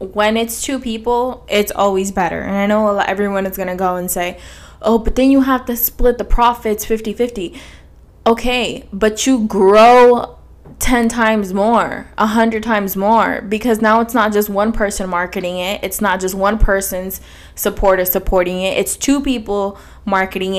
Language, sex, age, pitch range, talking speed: English, female, 10-29, 205-260 Hz, 170 wpm